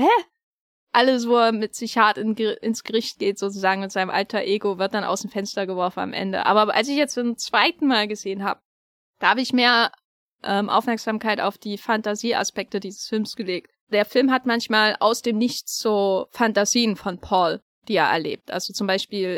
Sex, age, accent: female, 20-39, German